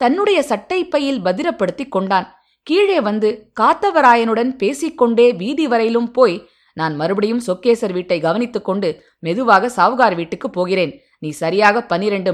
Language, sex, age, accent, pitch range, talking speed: Tamil, female, 20-39, native, 195-265 Hz, 120 wpm